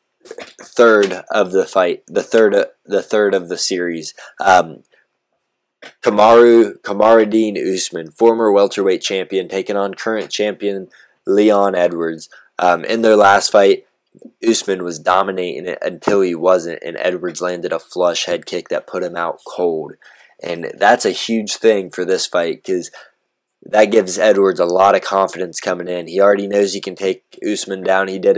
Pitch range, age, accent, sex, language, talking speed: 90-110 Hz, 20-39, American, male, English, 160 wpm